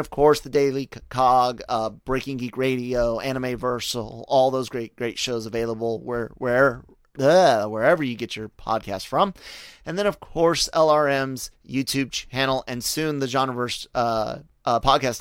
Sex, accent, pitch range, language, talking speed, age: male, American, 115-135 Hz, English, 160 wpm, 30-49